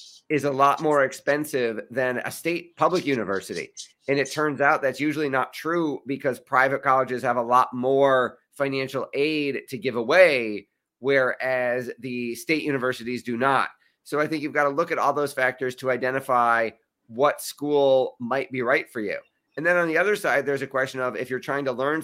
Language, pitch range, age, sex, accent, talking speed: English, 125-145 Hz, 30-49, male, American, 190 wpm